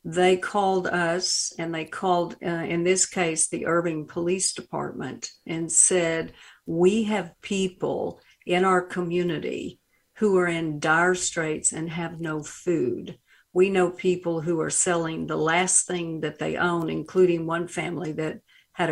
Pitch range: 165-190 Hz